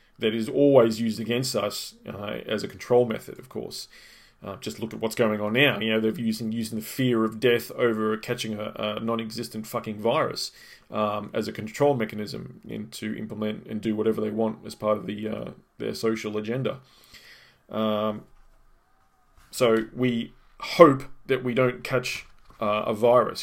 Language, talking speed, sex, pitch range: English, 175 wpm, male, 110-125 Hz